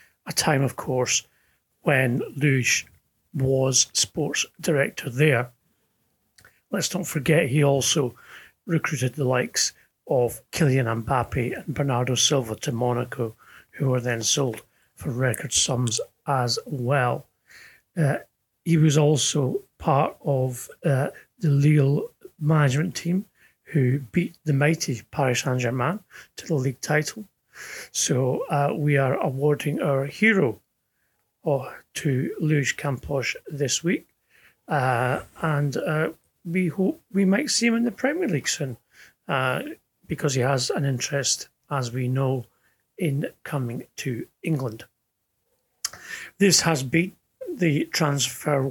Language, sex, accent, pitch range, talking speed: English, male, British, 130-165 Hz, 125 wpm